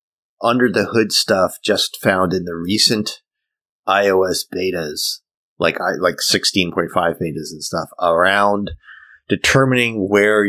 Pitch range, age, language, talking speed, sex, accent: 85-105 Hz, 30-49, English, 120 wpm, male, American